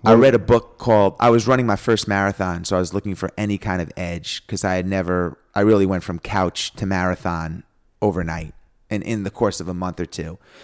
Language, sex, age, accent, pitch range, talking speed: English, male, 30-49, American, 90-105 Hz, 230 wpm